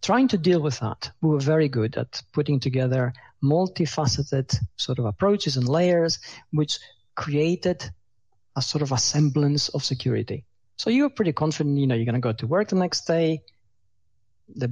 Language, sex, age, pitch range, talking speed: English, male, 40-59, 120-160 Hz, 180 wpm